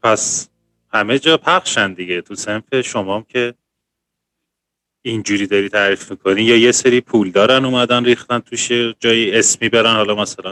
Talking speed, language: 155 wpm, Persian